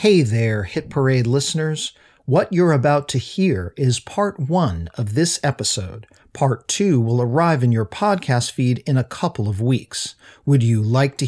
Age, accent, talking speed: 50-69, American, 175 wpm